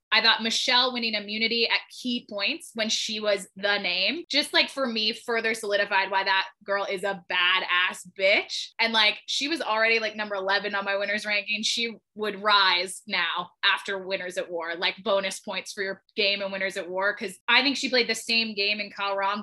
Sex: female